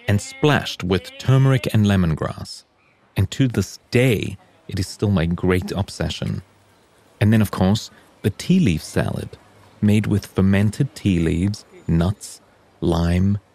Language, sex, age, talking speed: English, male, 30-49, 135 wpm